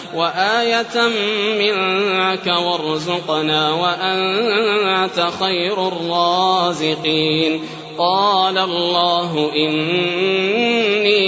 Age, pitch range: 30-49, 190-240 Hz